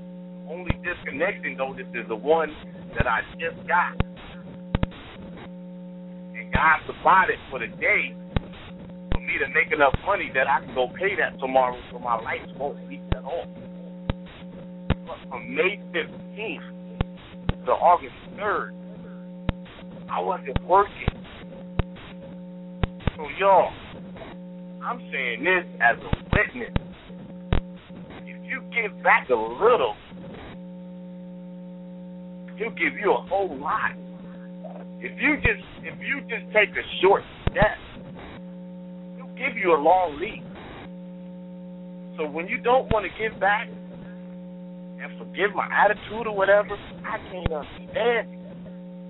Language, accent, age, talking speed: English, American, 50-69, 120 wpm